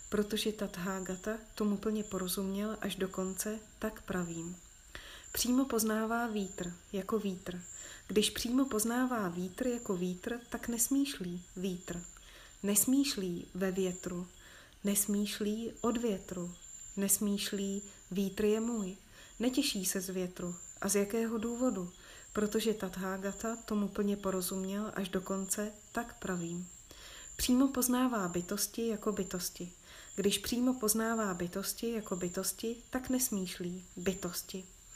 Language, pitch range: Czech, 185-225 Hz